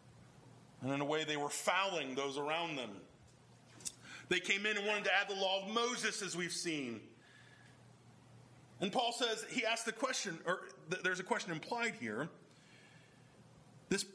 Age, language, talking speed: 30-49, English, 160 wpm